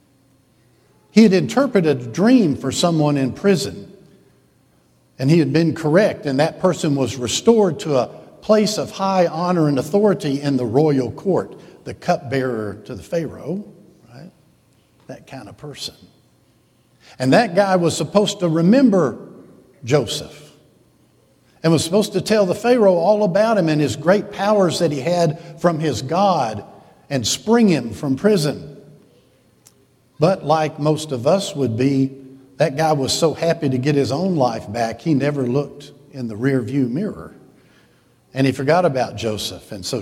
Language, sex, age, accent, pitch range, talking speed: English, male, 60-79, American, 135-180 Hz, 160 wpm